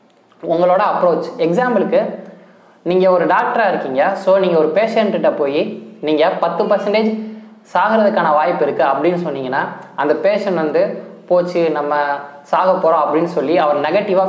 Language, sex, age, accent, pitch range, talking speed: Tamil, male, 20-39, native, 160-210 Hz, 130 wpm